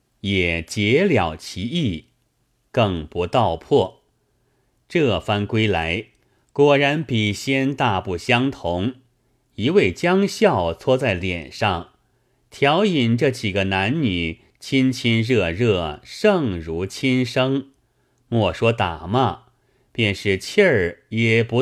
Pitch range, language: 100-130 Hz, Chinese